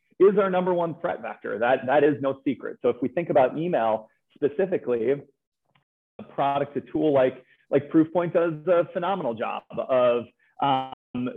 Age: 40-59